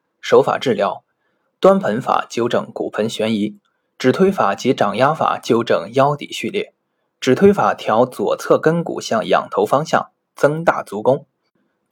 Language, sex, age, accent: Chinese, male, 20-39, native